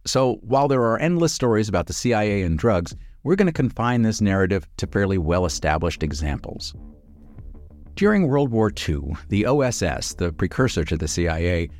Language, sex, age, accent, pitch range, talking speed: English, male, 50-69, American, 80-110 Hz, 165 wpm